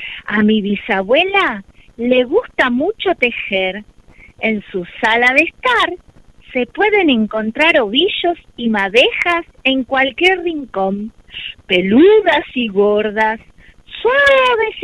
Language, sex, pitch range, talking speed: Spanish, female, 215-325 Hz, 100 wpm